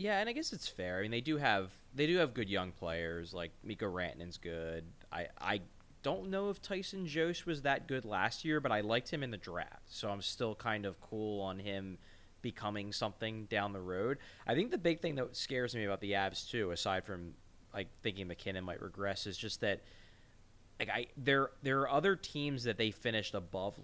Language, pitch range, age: English, 95-125 Hz, 20-39